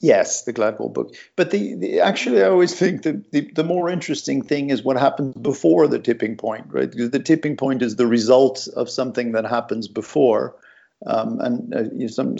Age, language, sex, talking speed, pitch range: 50-69, English, male, 205 wpm, 115-140 Hz